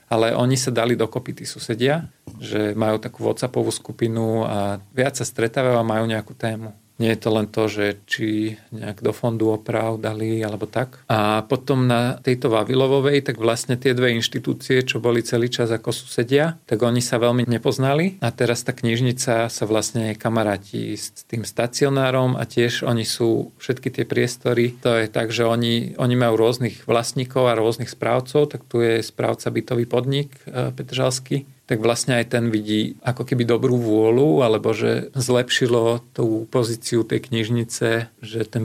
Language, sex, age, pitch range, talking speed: Slovak, male, 40-59, 115-125 Hz, 170 wpm